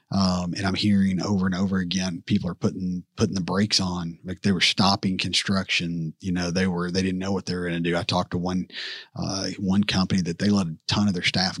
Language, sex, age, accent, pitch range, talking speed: English, male, 40-59, American, 95-110 Hz, 250 wpm